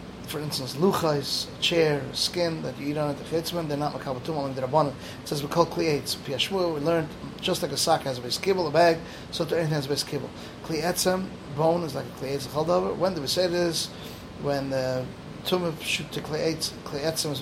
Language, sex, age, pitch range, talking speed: English, male, 30-49, 140-170 Hz, 210 wpm